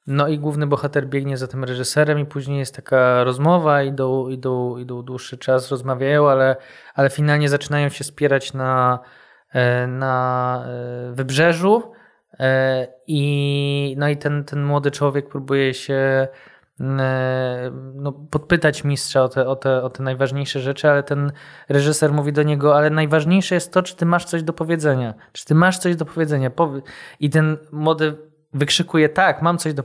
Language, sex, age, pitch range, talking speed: Polish, male, 20-39, 130-150 Hz, 145 wpm